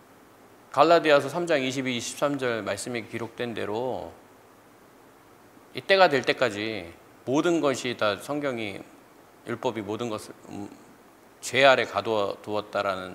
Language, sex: Korean, male